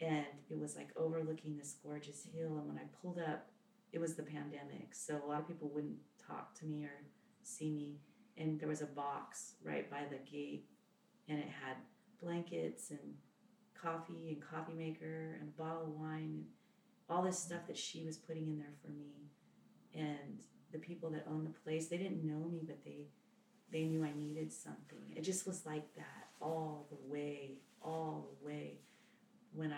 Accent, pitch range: American, 145-175 Hz